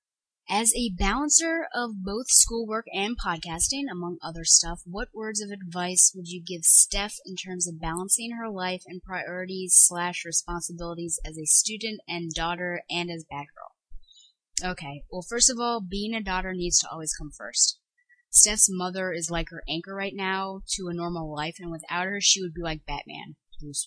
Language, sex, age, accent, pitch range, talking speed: English, female, 20-39, American, 165-195 Hz, 180 wpm